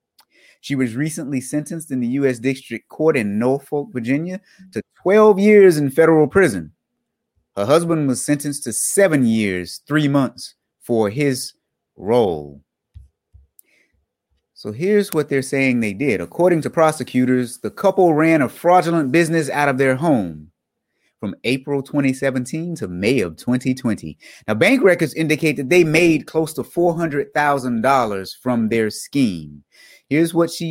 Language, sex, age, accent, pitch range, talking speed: English, male, 30-49, American, 125-165 Hz, 150 wpm